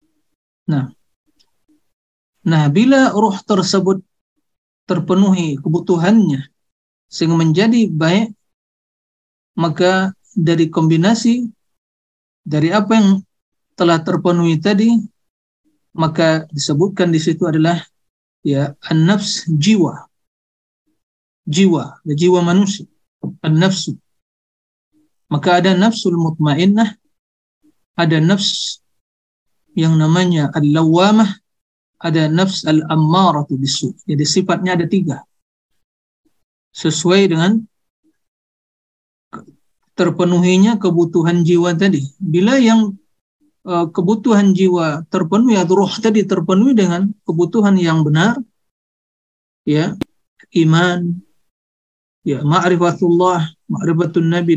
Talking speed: 80 wpm